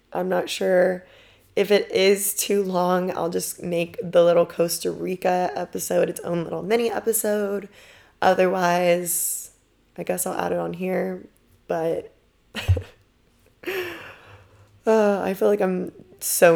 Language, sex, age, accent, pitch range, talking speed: English, female, 20-39, American, 165-195 Hz, 130 wpm